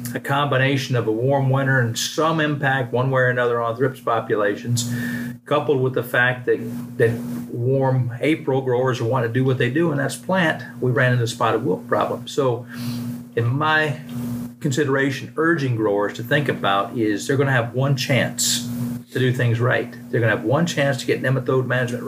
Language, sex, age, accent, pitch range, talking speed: English, male, 40-59, American, 120-140 Hz, 185 wpm